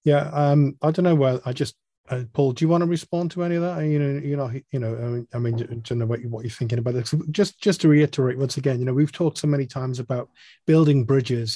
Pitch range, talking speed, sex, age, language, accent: 125-155 Hz, 295 wpm, male, 30-49, English, British